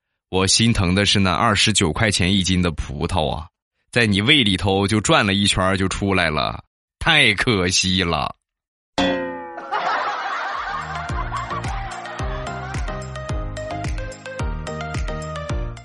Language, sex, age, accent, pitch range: Chinese, male, 20-39, native, 85-110 Hz